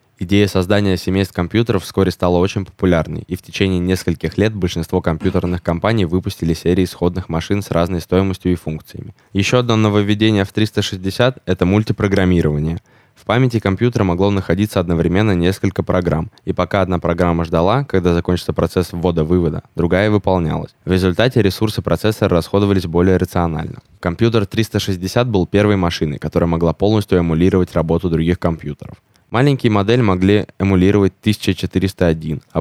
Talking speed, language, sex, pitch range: 140 wpm, Russian, male, 85-105 Hz